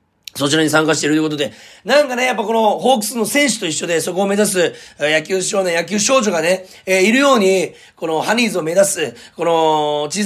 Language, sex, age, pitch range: Japanese, male, 40-59, 155-215 Hz